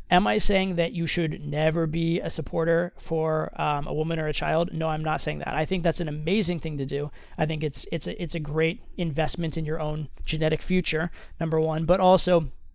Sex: male